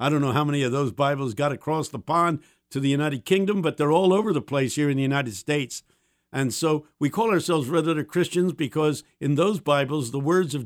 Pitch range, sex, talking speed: 140-185 Hz, male, 230 wpm